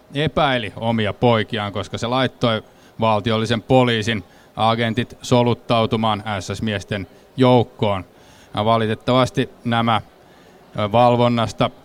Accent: native